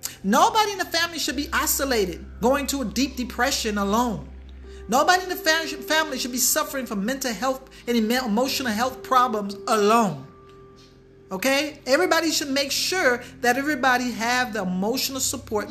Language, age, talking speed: English, 40-59, 150 wpm